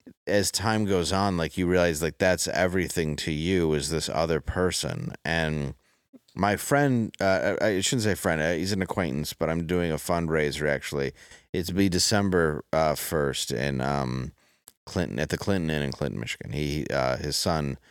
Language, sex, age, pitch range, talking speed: English, male, 30-49, 70-85 Hz, 175 wpm